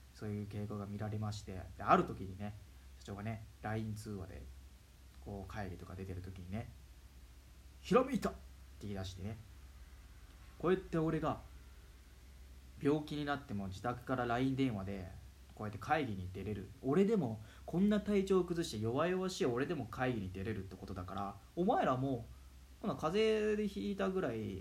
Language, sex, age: Japanese, male, 20-39